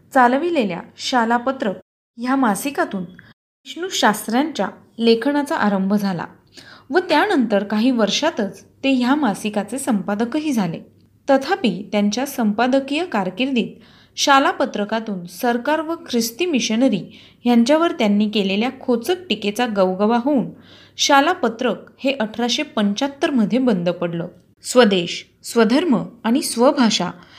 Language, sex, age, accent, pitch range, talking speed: Marathi, female, 20-39, native, 210-275 Hz, 85 wpm